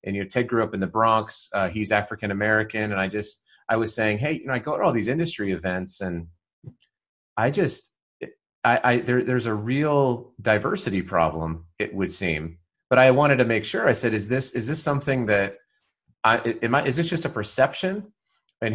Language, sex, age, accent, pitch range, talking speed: English, male, 30-49, American, 95-120 Hz, 210 wpm